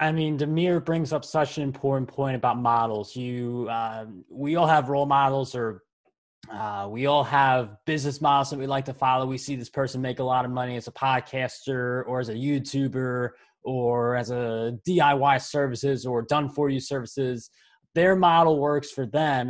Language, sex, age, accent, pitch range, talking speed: English, male, 20-39, American, 130-155 Hz, 180 wpm